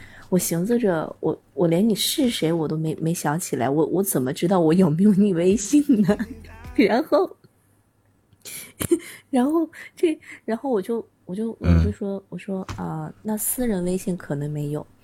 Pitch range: 155-210 Hz